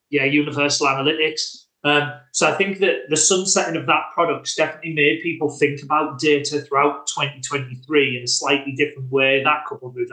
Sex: male